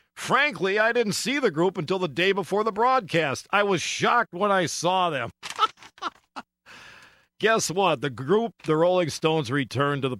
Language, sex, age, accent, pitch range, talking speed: English, male, 50-69, American, 135-195 Hz, 170 wpm